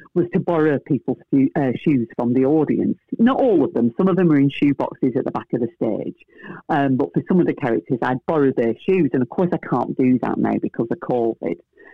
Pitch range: 140-195 Hz